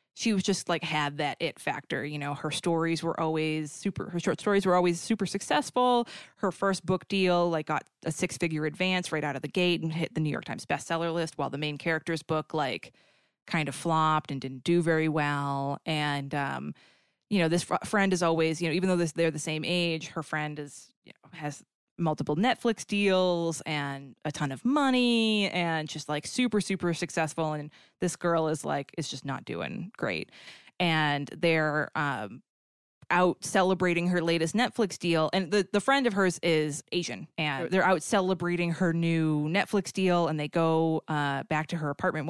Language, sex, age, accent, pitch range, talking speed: English, female, 20-39, American, 150-180 Hz, 195 wpm